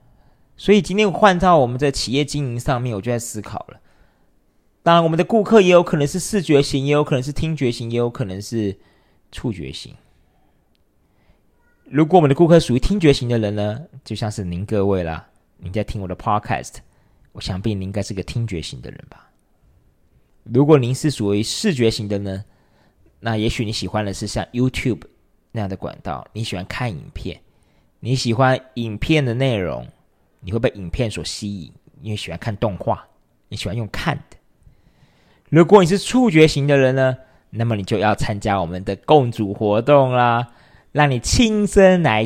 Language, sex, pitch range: Chinese, male, 100-150 Hz